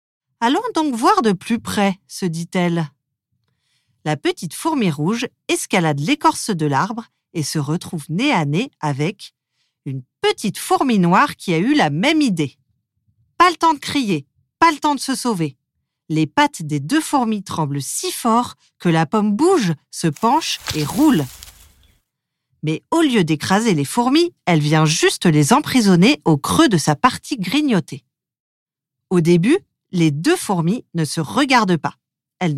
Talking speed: 160 wpm